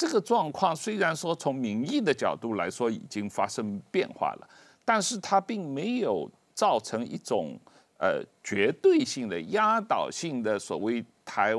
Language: Chinese